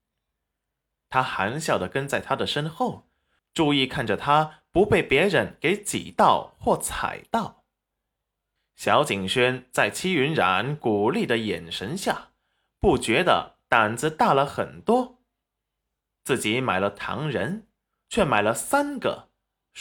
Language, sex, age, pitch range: Chinese, male, 20-39, 130-215 Hz